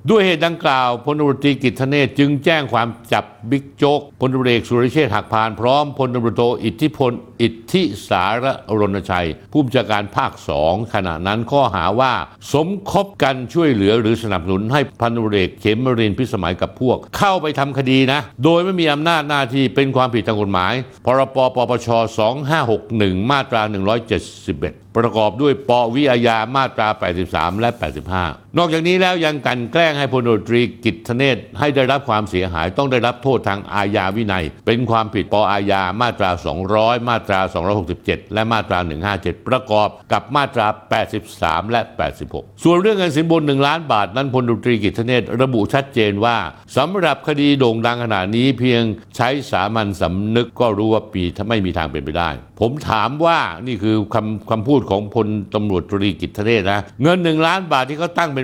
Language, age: Thai, 60-79